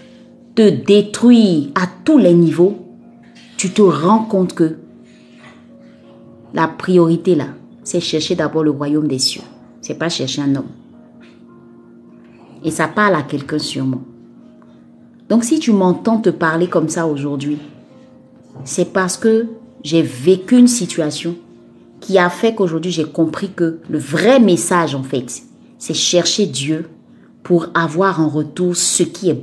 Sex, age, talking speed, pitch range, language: female, 30-49, 145 wpm, 150-195 Hz, French